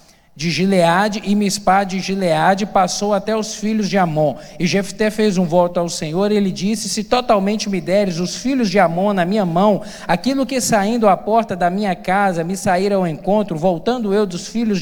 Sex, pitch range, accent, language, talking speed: male, 165-210 Hz, Brazilian, Portuguese, 200 wpm